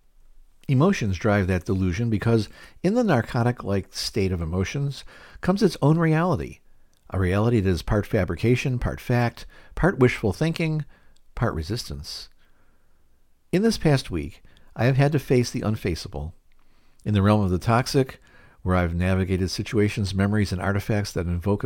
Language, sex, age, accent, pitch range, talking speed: English, male, 50-69, American, 95-130 Hz, 150 wpm